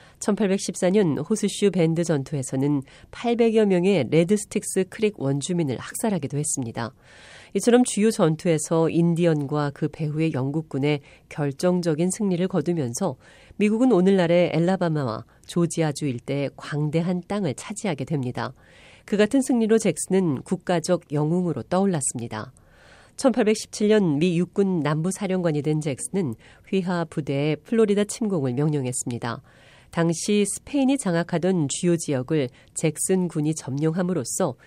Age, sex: 40-59, female